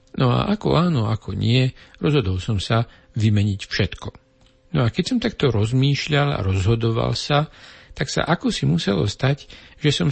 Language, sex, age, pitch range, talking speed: Slovak, male, 50-69, 100-130 Hz, 165 wpm